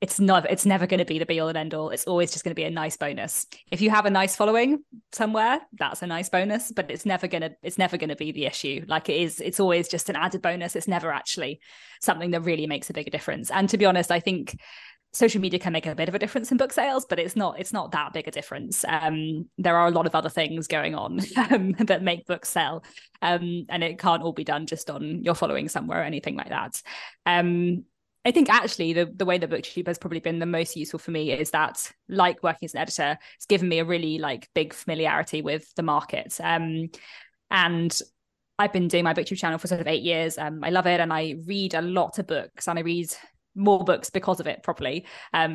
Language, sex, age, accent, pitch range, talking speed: English, female, 20-39, British, 165-190 Hz, 250 wpm